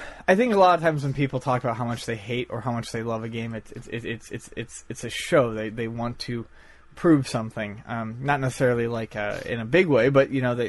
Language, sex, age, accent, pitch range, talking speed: English, male, 30-49, American, 115-145 Hz, 270 wpm